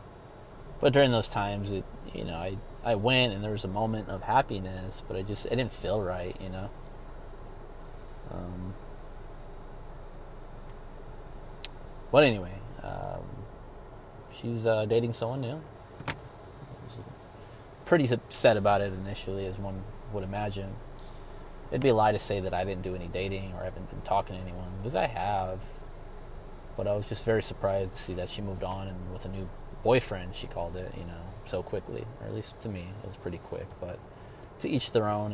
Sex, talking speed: male, 180 wpm